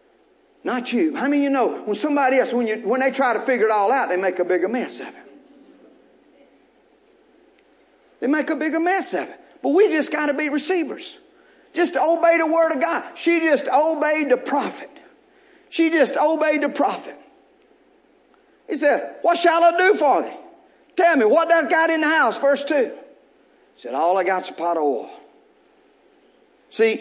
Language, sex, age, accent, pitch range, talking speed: English, male, 50-69, American, 235-375 Hz, 195 wpm